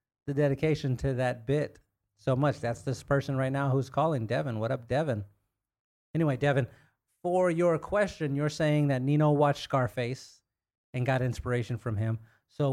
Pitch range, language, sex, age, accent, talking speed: 115-140 Hz, English, male, 30-49, American, 165 wpm